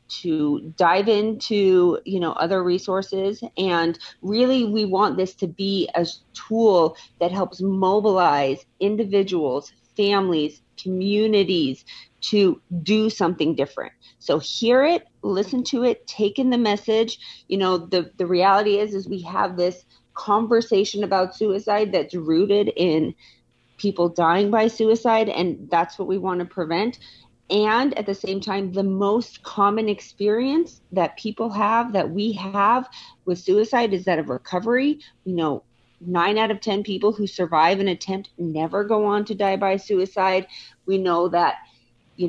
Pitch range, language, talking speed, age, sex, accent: 175-210 Hz, English, 150 wpm, 40-59, female, American